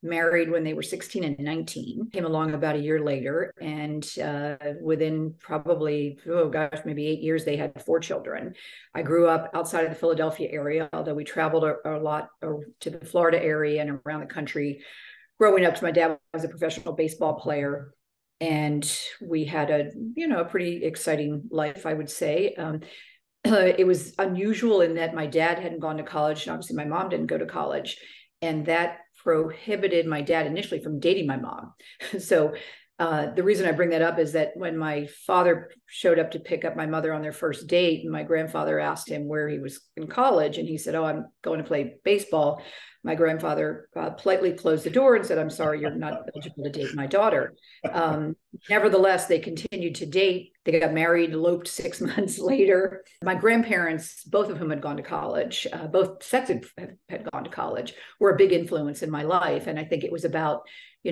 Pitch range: 155-180 Hz